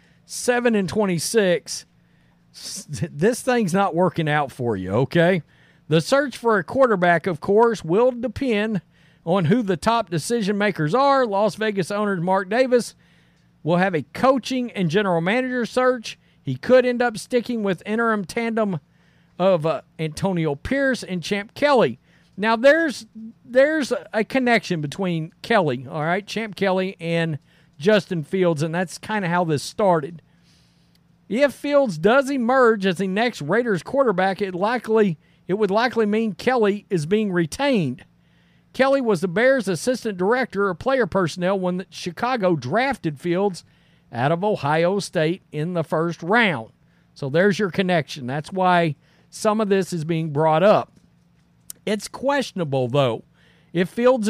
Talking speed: 150 wpm